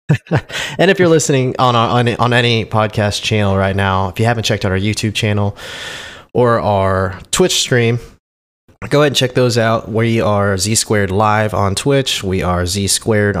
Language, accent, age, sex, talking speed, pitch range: English, American, 20-39, male, 185 wpm, 100-120 Hz